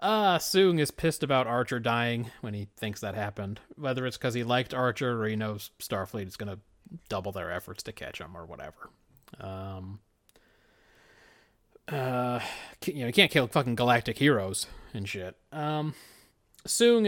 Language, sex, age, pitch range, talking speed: English, male, 30-49, 110-145 Hz, 165 wpm